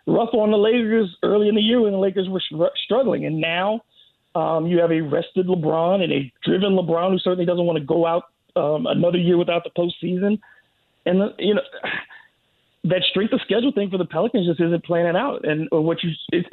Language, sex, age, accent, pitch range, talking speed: English, male, 40-59, American, 170-220 Hz, 220 wpm